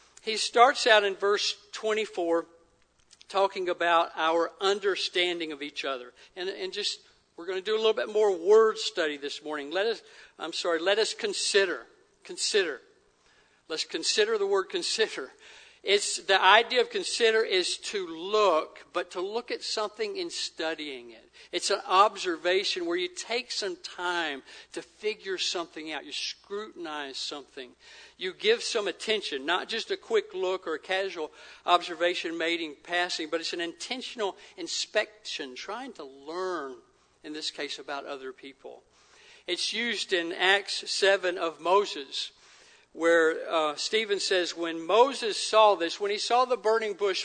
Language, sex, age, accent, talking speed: English, male, 60-79, American, 155 wpm